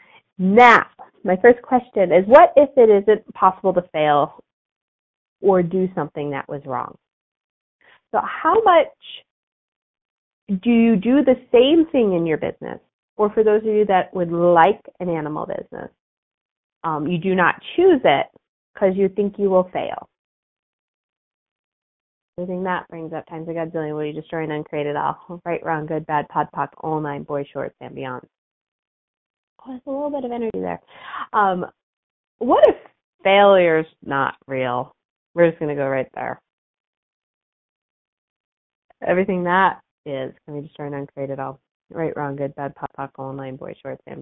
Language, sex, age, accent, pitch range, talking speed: English, female, 30-49, American, 160-240 Hz, 160 wpm